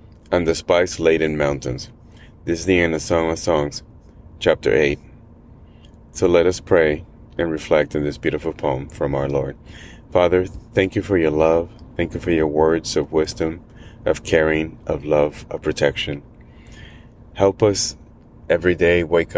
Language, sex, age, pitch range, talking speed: English, male, 30-49, 80-90 Hz, 160 wpm